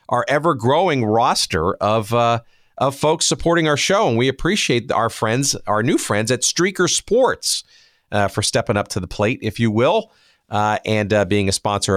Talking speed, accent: 185 wpm, American